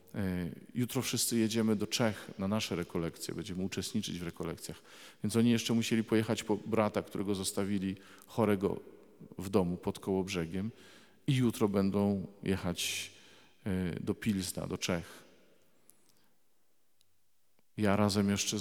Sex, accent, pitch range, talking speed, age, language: male, native, 95-130 Hz, 125 wpm, 50-69, Polish